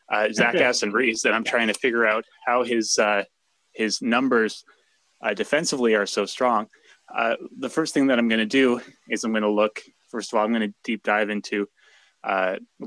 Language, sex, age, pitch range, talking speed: English, male, 20-39, 105-120 Hz, 205 wpm